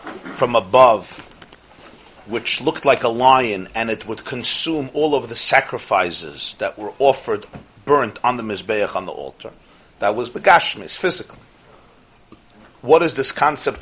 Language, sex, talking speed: English, male, 145 wpm